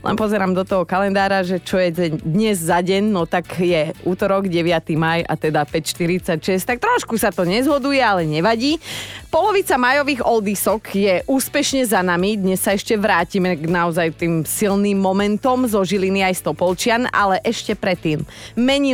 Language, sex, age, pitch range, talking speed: Slovak, female, 30-49, 165-220 Hz, 160 wpm